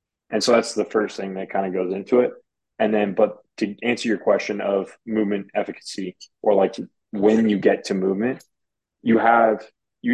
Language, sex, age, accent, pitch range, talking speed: English, male, 20-39, American, 95-110 Hz, 190 wpm